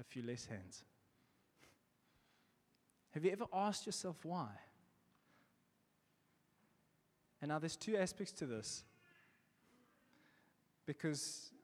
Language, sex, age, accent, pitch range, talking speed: English, male, 20-39, South African, 125-180 Hz, 95 wpm